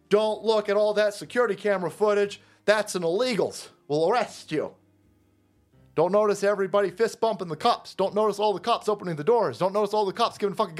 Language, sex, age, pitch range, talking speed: English, male, 30-49, 125-210 Hz, 200 wpm